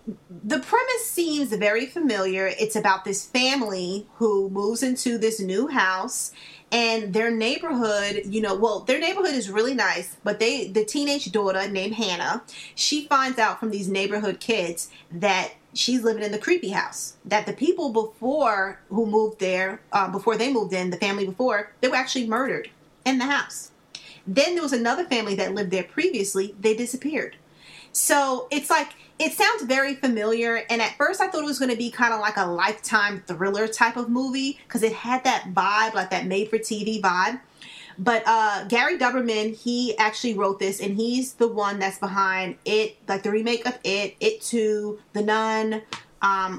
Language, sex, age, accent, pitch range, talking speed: English, female, 30-49, American, 200-255 Hz, 185 wpm